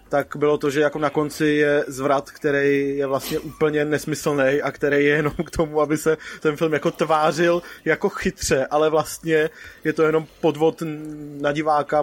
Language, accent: Czech, native